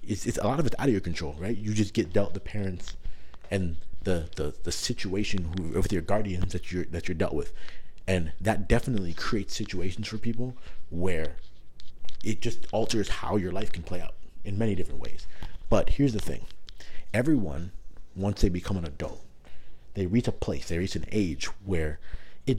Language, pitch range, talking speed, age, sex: English, 85-105 Hz, 195 wpm, 30-49, male